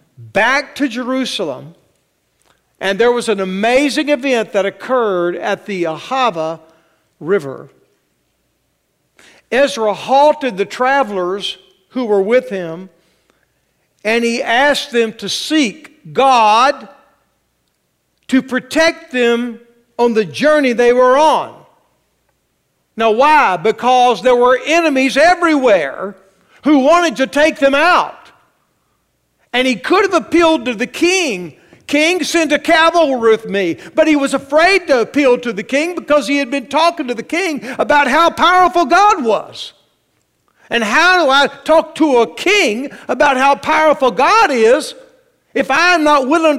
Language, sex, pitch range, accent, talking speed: English, male, 210-305 Hz, American, 135 wpm